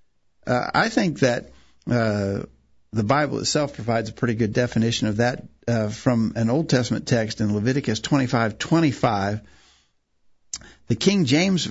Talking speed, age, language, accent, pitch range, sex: 140 wpm, 60-79, English, American, 115-145 Hz, male